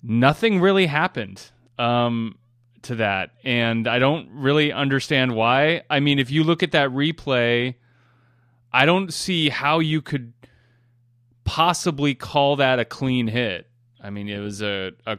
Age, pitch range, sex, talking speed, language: 30-49, 120-140 Hz, male, 150 wpm, English